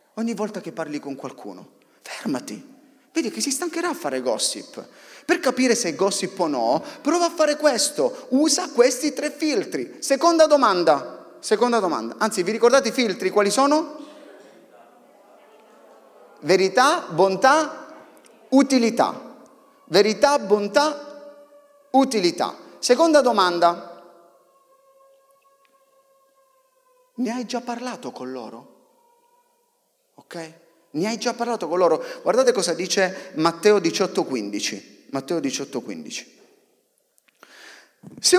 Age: 30-49